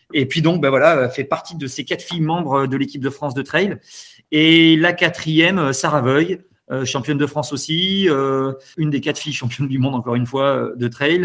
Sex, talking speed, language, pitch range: male, 215 wpm, French, 135-165 Hz